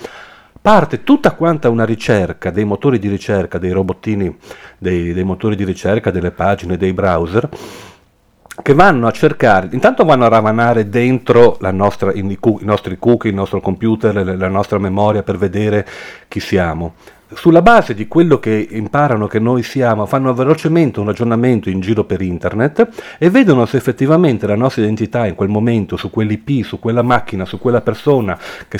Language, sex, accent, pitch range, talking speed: Italian, male, native, 100-130 Hz, 165 wpm